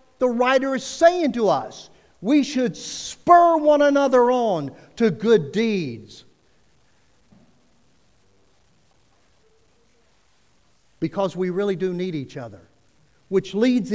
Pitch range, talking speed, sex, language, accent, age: 180-250 Hz, 105 wpm, male, English, American, 50-69